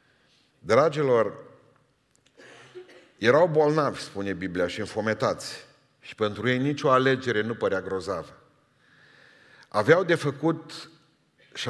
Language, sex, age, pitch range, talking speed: Romanian, male, 40-59, 110-145 Hz, 95 wpm